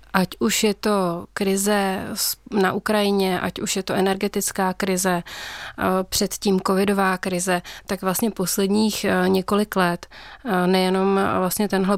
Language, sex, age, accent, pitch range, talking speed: Czech, female, 30-49, native, 180-200 Hz, 120 wpm